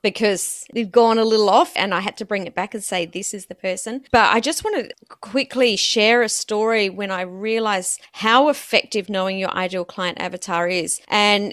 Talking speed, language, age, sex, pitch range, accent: 205 wpm, English, 30-49, female, 195-245 Hz, Australian